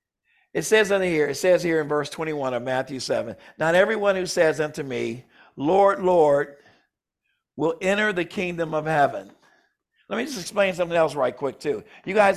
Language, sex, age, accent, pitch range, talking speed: English, male, 50-69, American, 145-185 Hz, 180 wpm